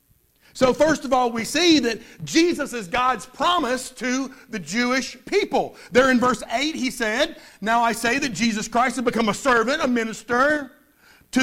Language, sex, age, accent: English, male, 50-69, American